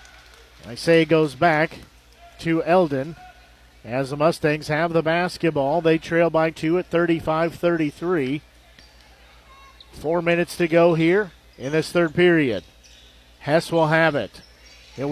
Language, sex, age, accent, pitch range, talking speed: English, male, 50-69, American, 125-175 Hz, 130 wpm